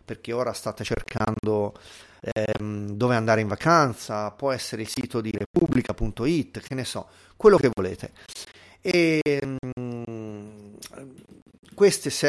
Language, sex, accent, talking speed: Italian, male, native, 105 wpm